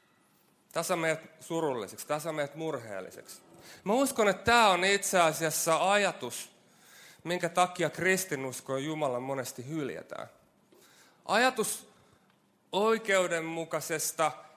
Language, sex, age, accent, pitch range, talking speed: Finnish, male, 30-49, native, 135-185 Hz, 80 wpm